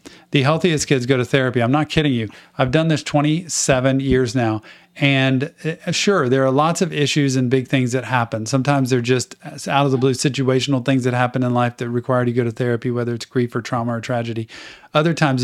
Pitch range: 125-150 Hz